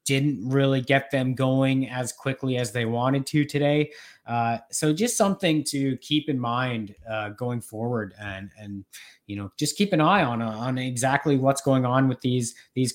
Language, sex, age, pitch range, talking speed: English, male, 20-39, 110-135 Hz, 190 wpm